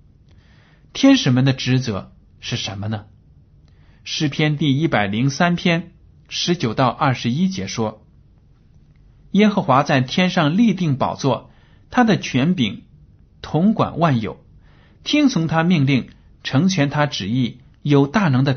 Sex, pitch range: male, 110-160 Hz